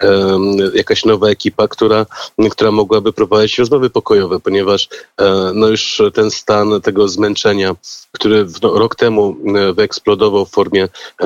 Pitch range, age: 100-110 Hz, 30-49